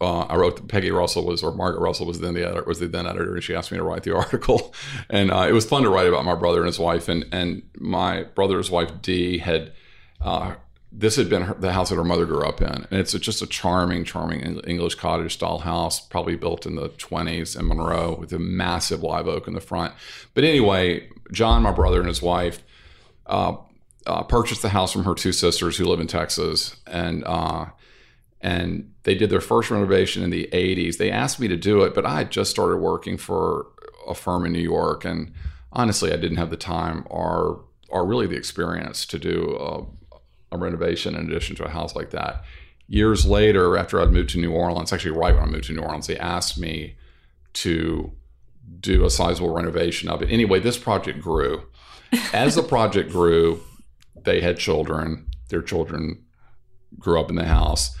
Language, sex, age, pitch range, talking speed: English, male, 40-59, 80-95 Hz, 210 wpm